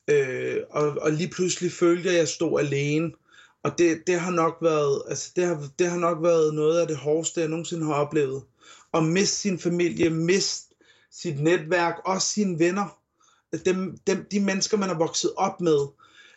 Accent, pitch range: native, 150-185 Hz